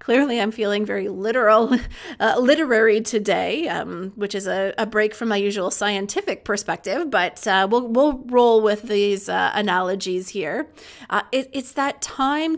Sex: female